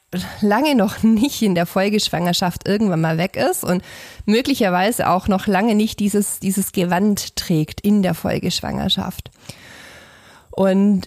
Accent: German